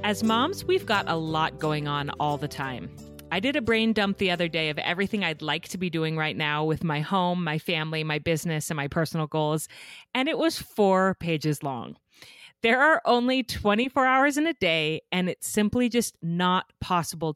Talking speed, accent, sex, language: 205 wpm, American, female, English